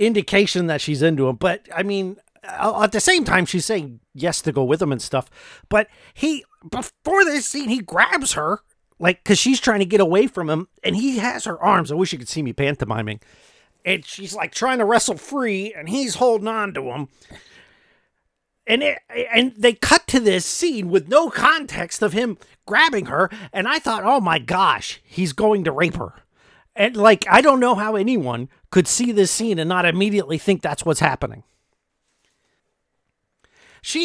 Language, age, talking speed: English, 40-59, 190 wpm